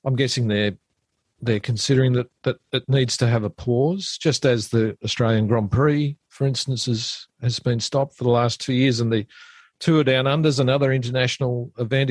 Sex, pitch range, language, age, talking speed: male, 110-135 Hz, English, 50-69, 195 wpm